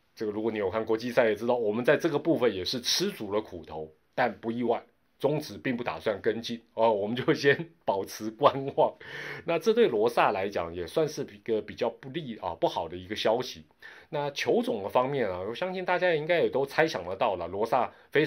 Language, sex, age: Chinese, male, 30-49